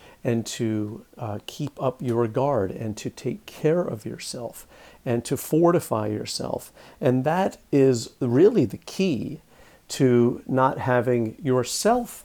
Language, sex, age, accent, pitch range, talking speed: English, male, 50-69, American, 115-140 Hz, 130 wpm